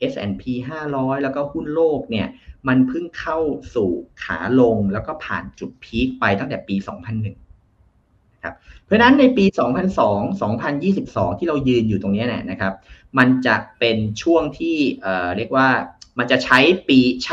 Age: 30-49